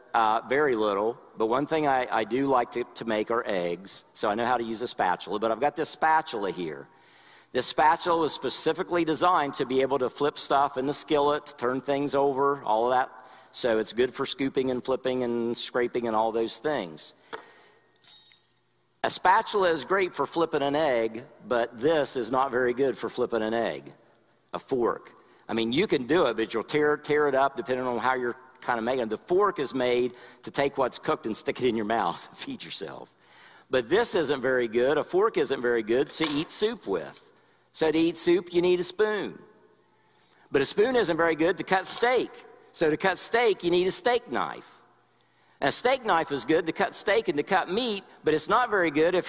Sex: male